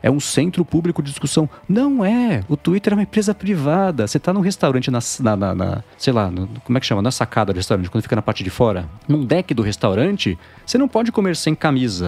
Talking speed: 245 wpm